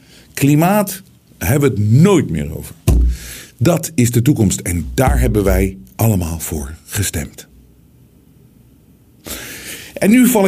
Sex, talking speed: male, 120 wpm